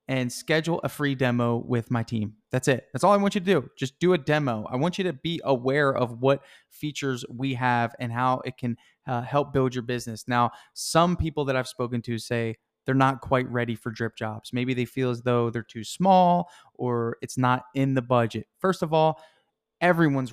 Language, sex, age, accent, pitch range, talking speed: English, male, 20-39, American, 120-145 Hz, 220 wpm